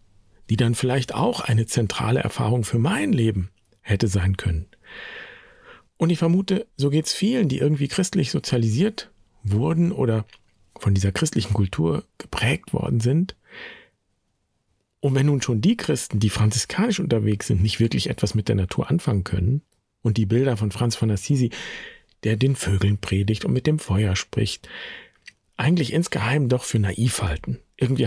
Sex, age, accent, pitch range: male, 50-69, German, 105-140 Hz